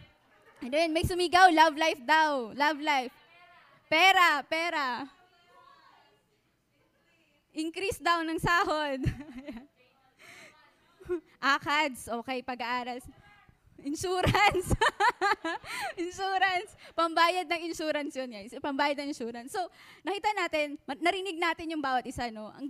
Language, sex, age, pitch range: English, female, 20-39, 260-335 Hz